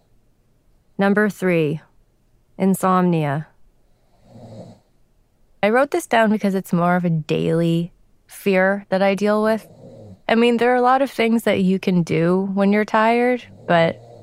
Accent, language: American, English